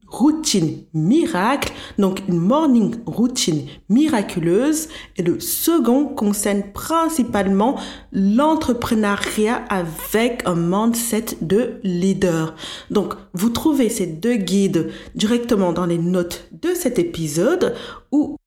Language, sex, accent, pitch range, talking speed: French, female, French, 175-245 Hz, 105 wpm